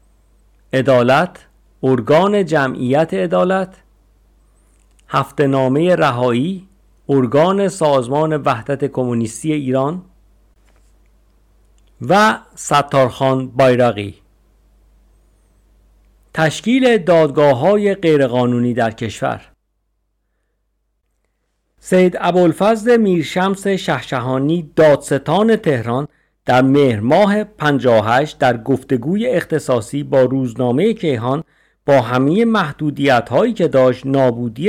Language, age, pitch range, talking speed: Persian, 50-69, 120-165 Hz, 75 wpm